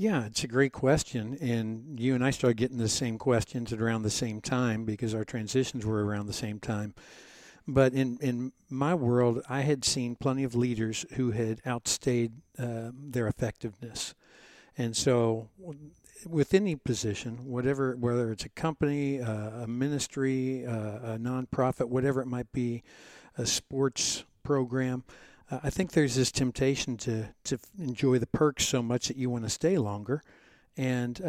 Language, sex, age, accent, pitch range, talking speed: English, male, 60-79, American, 115-135 Hz, 165 wpm